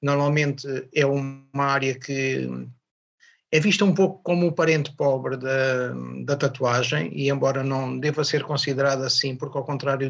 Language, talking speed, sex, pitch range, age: Portuguese, 155 wpm, male, 130-150 Hz, 50-69